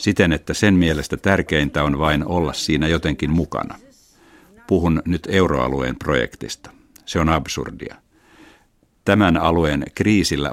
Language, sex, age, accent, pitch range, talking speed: Finnish, male, 60-79, native, 70-90 Hz, 120 wpm